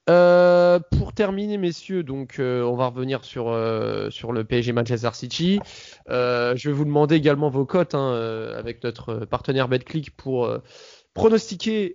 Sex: male